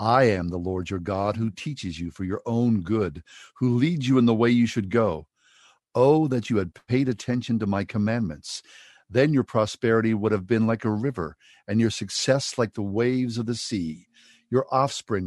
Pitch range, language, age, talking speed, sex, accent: 105-135 Hz, English, 50-69, 200 wpm, male, American